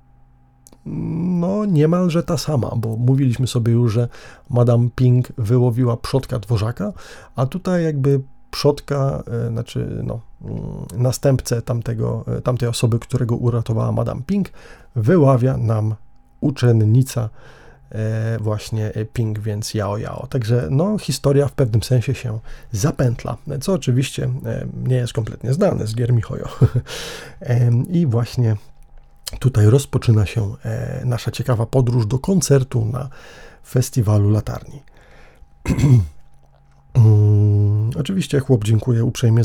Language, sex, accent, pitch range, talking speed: Polish, male, native, 115-135 Hz, 110 wpm